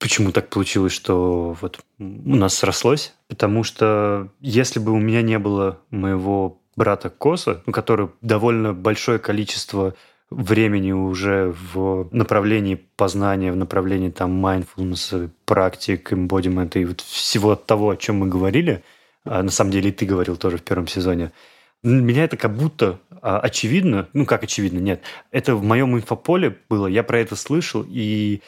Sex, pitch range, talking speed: male, 95-115 Hz, 150 wpm